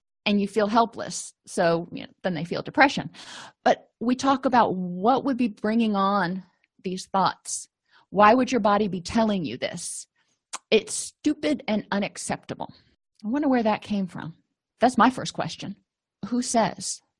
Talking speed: 160 wpm